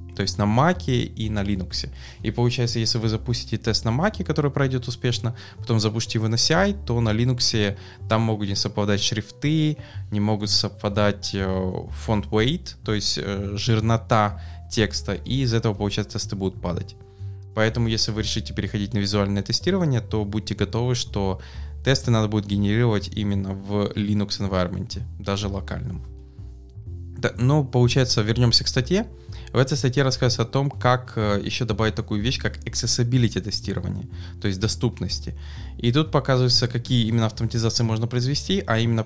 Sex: male